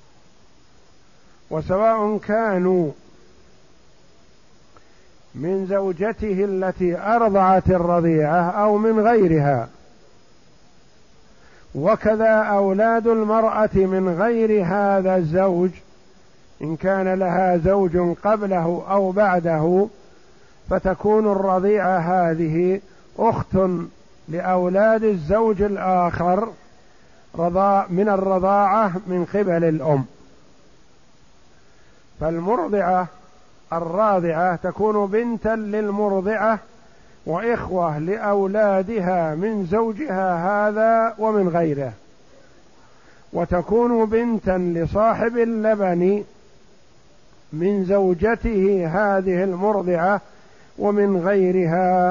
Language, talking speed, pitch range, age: Arabic, 65 wpm, 170-210 Hz, 50-69